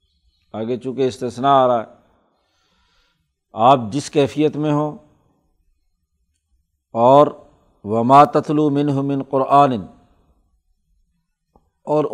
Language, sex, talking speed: Urdu, male, 85 wpm